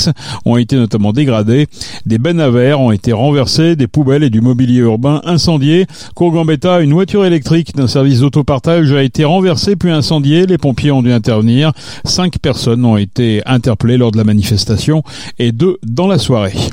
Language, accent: French, French